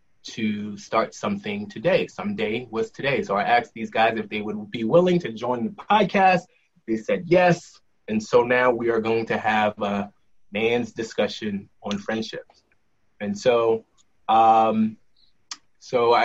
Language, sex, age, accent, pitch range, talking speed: English, male, 20-39, American, 105-125 Hz, 150 wpm